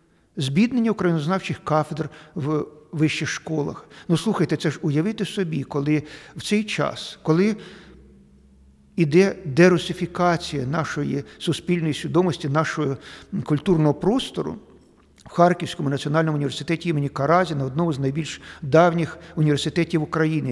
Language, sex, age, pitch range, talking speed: Ukrainian, male, 50-69, 150-190 Hz, 110 wpm